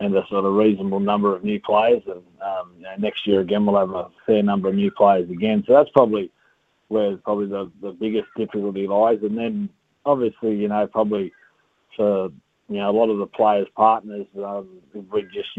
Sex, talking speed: male, 200 wpm